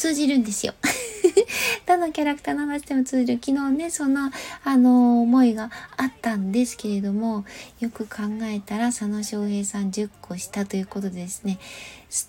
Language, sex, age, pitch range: Japanese, female, 20-39, 210-275 Hz